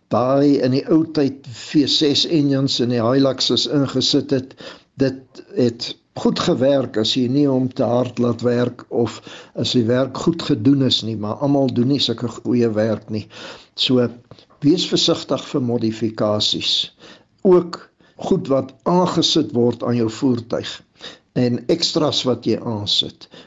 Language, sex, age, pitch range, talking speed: English, male, 60-79, 120-145 Hz, 150 wpm